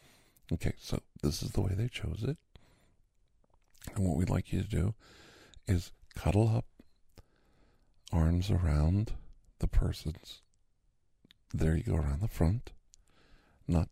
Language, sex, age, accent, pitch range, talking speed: English, male, 50-69, American, 80-105 Hz, 130 wpm